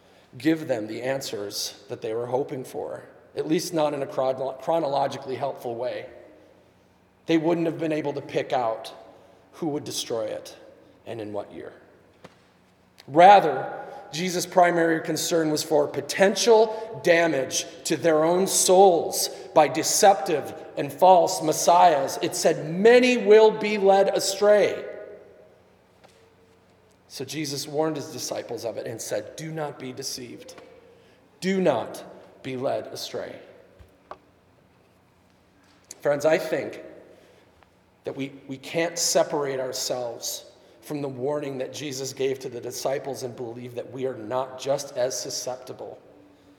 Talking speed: 130 wpm